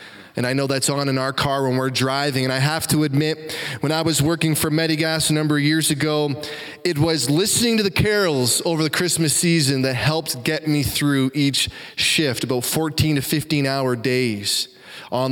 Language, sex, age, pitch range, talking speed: English, male, 20-39, 130-160 Hz, 195 wpm